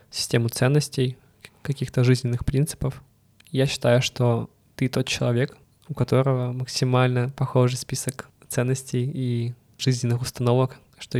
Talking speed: 115 wpm